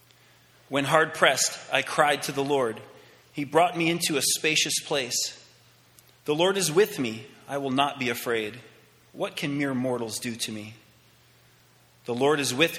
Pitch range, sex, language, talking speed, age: 120-150 Hz, male, English, 165 wpm, 30-49